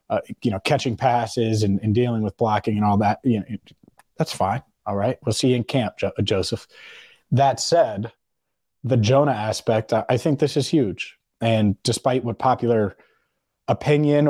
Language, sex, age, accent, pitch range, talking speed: English, male, 30-49, American, 110-135 Hz, 175 wpm